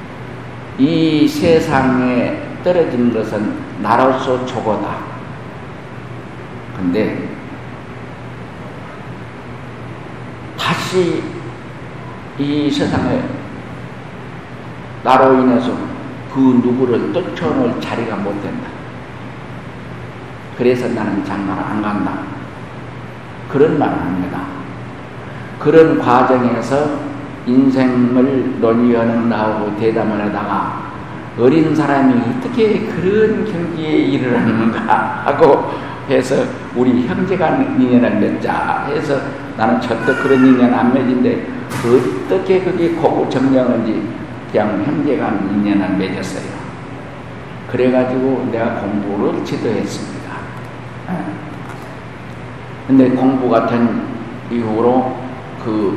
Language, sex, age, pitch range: Korean, male, 50-69, 115-140 Hz